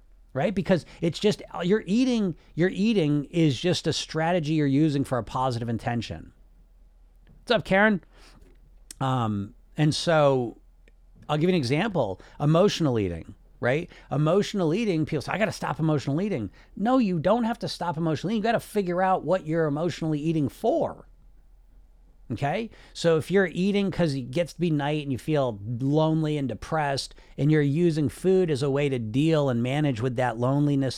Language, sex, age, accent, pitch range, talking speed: English, male, 40-59, American, 130-180 Hz, 175 wpm